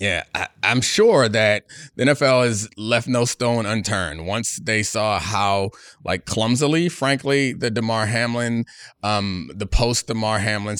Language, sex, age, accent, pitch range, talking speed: English, male, 30-49, American, 95-120 Hz, 145 wpm